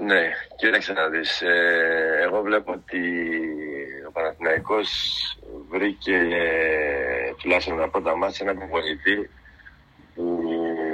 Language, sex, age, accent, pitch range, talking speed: Greek, male, 50-69, Spanish, 80-95 Hz, 95 wpm